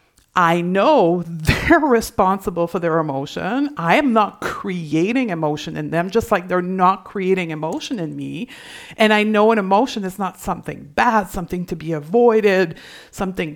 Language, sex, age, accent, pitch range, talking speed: English, female, 50-69, American, 185-240 Hz, 160 wpm